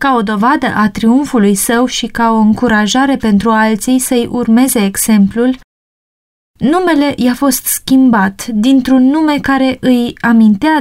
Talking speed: 135 wpm